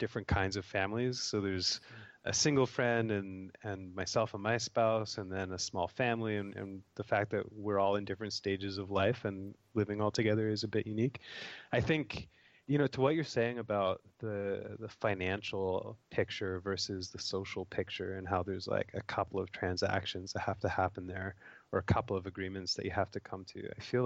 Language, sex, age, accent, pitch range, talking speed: English, male, 20-39, American, 95-110 Hz, 205 wpm